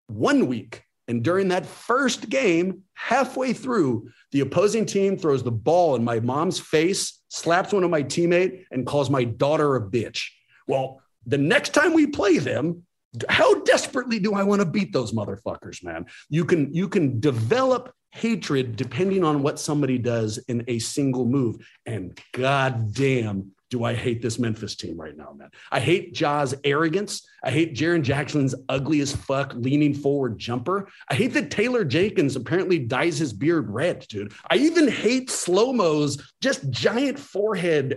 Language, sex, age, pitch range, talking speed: English, male, 40-59, 130-190 Hz, 165 wpm